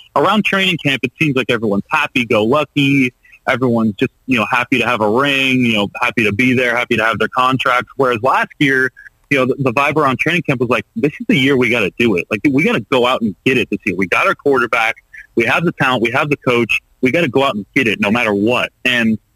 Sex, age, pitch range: male, 30-49, 115-140 Hz